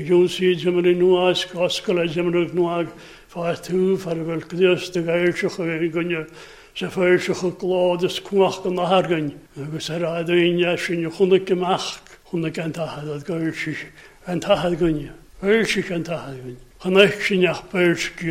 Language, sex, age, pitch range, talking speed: English, male, 60-79, 160-185 Hz, 130 wpm